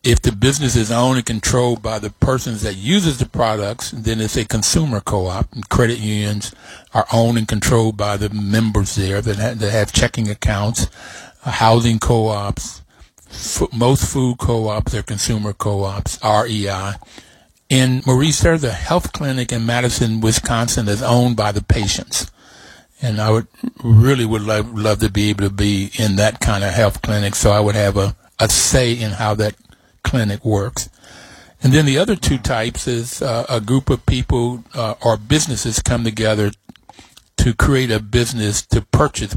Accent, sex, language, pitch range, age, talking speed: American, male, English, 105-120 Hz, 60-79, 170 wpm